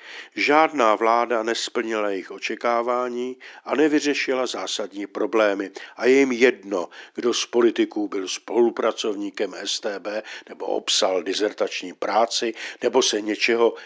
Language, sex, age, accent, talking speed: Czech, male, 50-69, native, 115 wpm